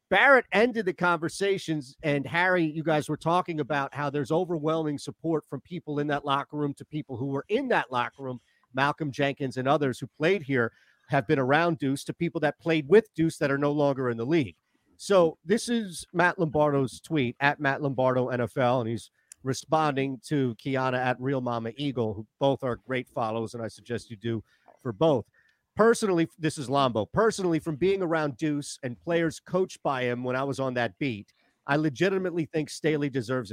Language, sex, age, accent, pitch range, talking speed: English, male, 40-59, American, 130-175 Hz, 195 wpm